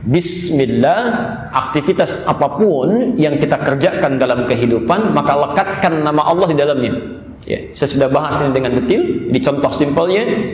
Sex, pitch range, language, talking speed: male, 150-195 Hz, Indonesian, 135 wpm